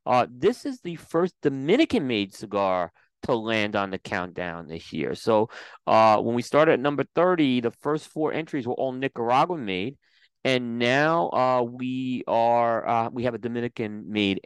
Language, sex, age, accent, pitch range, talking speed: English, male, 30-49, American, 105-125 Hz, 160 wpm